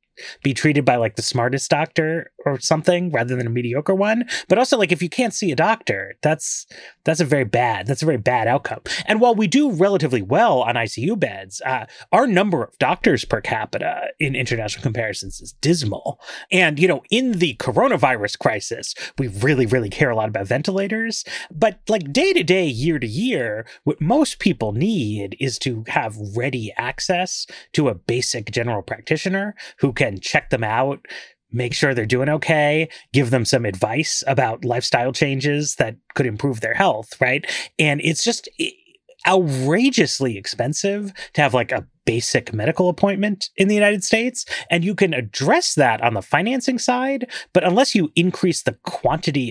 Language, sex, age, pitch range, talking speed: English, male, 30-49, 125-195 Hz, 175 wpm